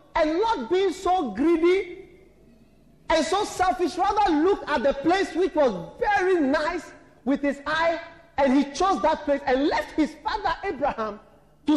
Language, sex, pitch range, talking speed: English, male, 270-360 Hz, 160 wpm